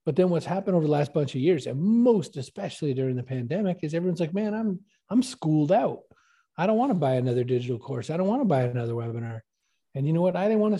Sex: male